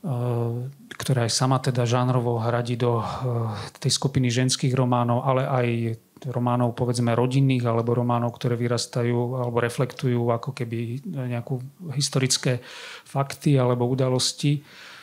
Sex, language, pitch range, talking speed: male, Slovak, 120-135 Hz, 115 wpm